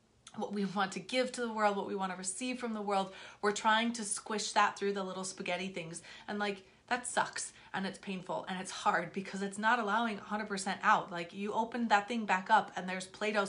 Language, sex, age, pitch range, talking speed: English, female, 30-49, 185-215 Hz, 230 wpm